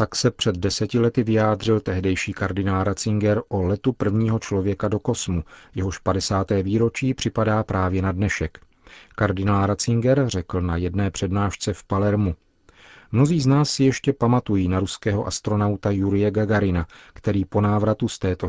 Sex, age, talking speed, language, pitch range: male, 40-59, 150 wpm, Czech, 95-110 Hz